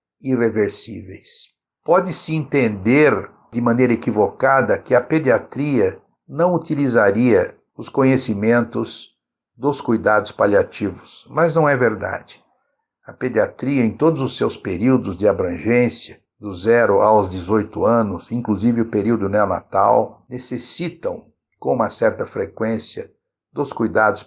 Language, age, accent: Portuguese, 60-79, Brazilian